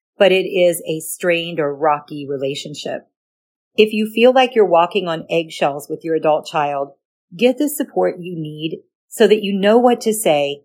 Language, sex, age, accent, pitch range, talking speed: English, female, 40-59, American, 160-210 Hz, 180 wpm